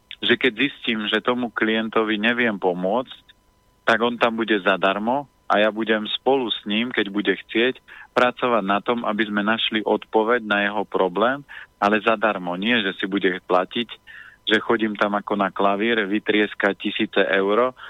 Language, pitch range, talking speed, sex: Slovak, 100-115 Hz, 160 wpm, male